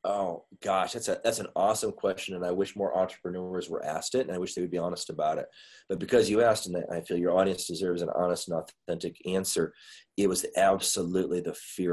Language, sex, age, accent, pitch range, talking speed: English, male, 30-49, American, 90-110 Hz, 225 wpm